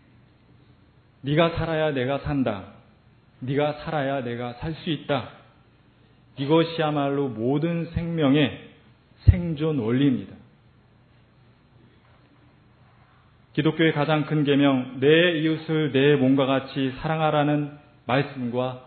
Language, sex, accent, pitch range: Korean, male, native, 115-140 Hz